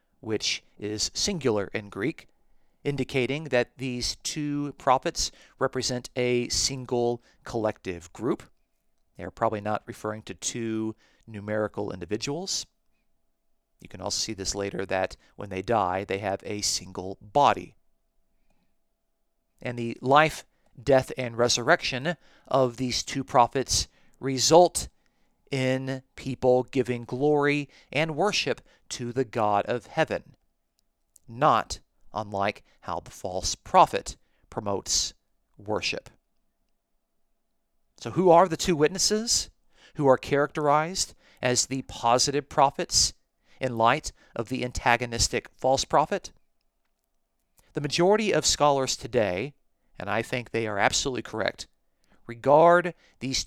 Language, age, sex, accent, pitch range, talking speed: English, 40-59, male, American, 105-145 Hz, 115 wpm